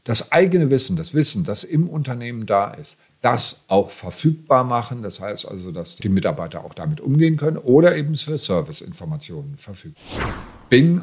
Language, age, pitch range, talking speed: German, 50-69, 105-150 Hz, 165 wpm